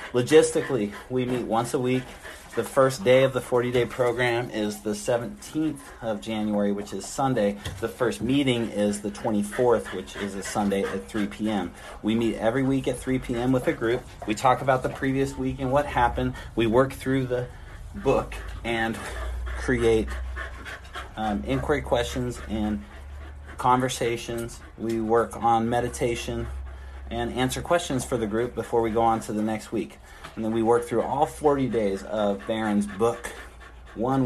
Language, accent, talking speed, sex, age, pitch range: English, American, 165 wpm, male, 30-49, 100-125 Hz